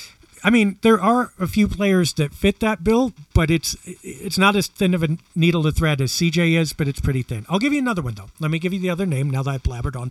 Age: 50-69